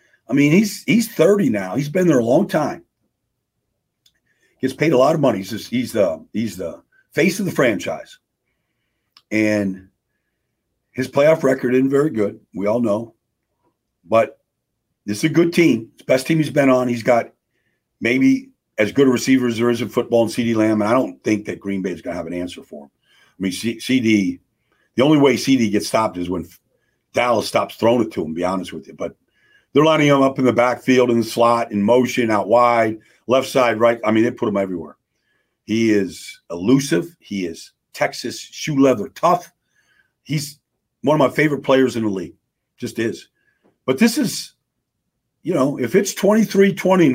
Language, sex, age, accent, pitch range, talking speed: English, male, 50-69, American, 110-155 Hz, 200 wpm